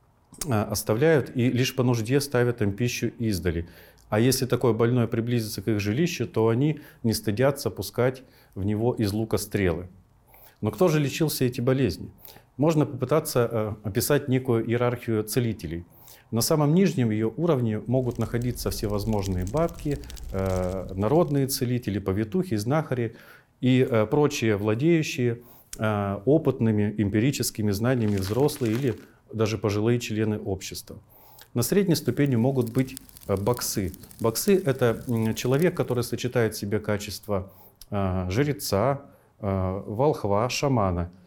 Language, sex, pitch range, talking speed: Russian, male, 105-130 Hz, 120 wpm